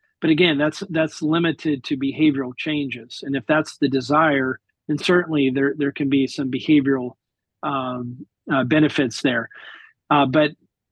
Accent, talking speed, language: American, 150 wpm, English